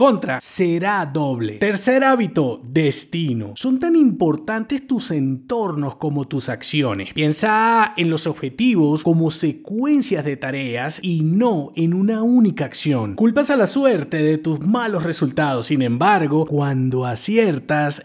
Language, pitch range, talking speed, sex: Spanish, 150-225 Hz, 135 wpm, male